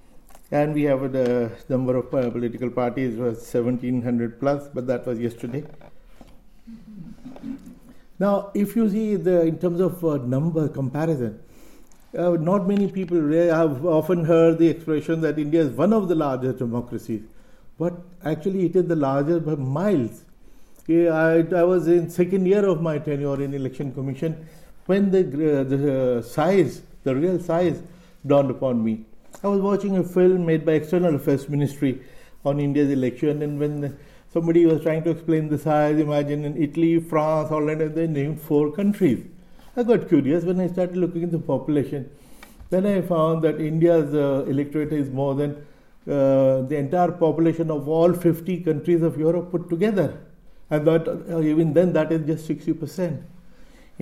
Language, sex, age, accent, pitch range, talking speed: English, male, 50-69, Indian, 140-175 Hz, 170 wpm